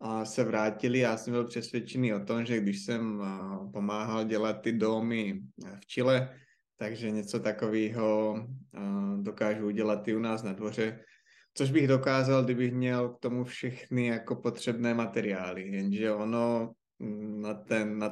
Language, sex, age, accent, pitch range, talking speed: Czech, male, 20-39, native, 105-120 Hz, 140 wpm